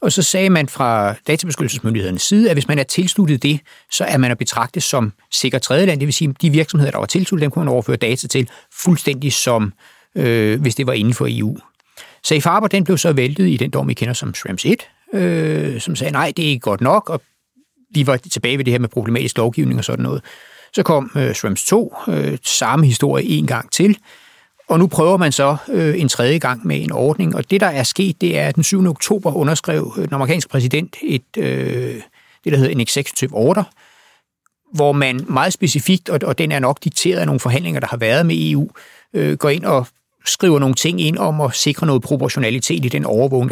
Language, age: Danish, 60-79